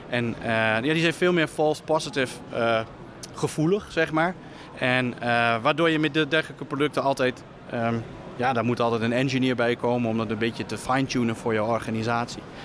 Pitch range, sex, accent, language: 125-155 Hz, male, Dutch, Dutch